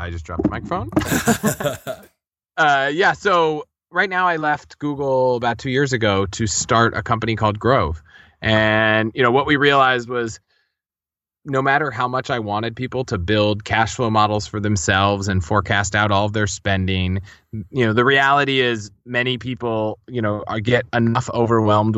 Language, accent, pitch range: English, American, 105-125 Hz